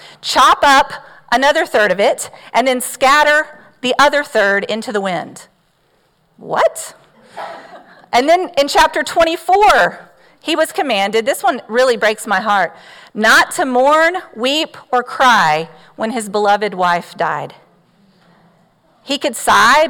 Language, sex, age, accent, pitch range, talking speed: English, female, 40-59, American, 200-295 Hz, 135 wpm